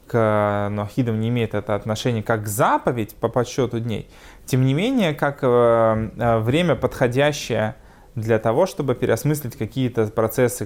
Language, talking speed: Russian, 125 wpm